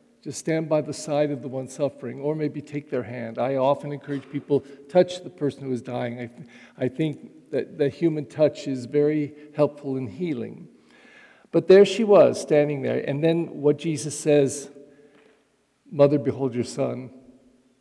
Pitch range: 135-165 Hz